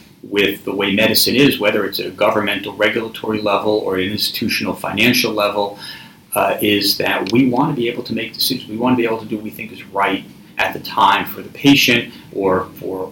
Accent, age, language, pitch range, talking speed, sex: American, 40-59, English, 95-115 Hz, 220 wpm, male